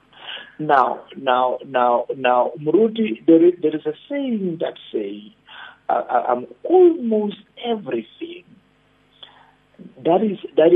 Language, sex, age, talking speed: English, male, 50-69, 105 wpm